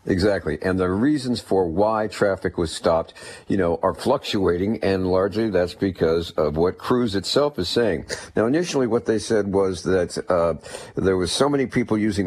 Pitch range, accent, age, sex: 90-110 Hz, American, 50-69, male